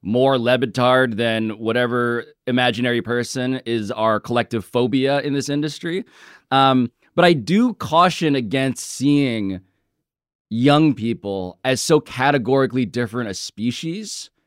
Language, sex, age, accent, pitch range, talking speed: English, male, 20-39, American, 120-165 Hz, 115 wpm